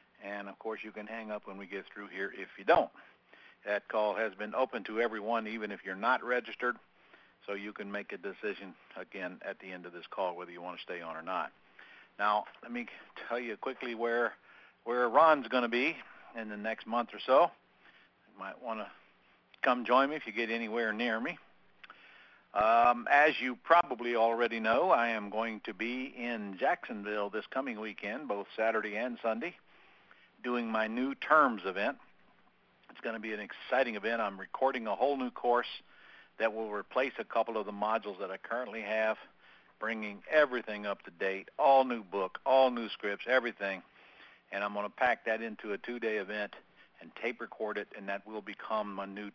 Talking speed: 195 wpm